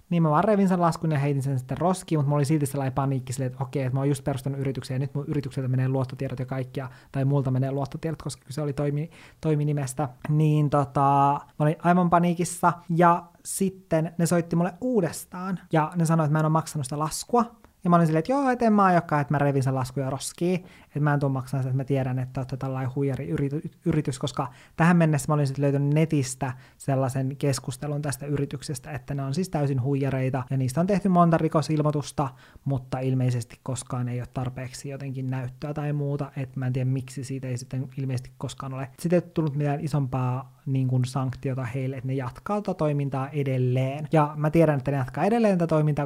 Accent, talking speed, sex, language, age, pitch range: native, 205 wpm, male, Finnish, 20-39, 135-160 Hz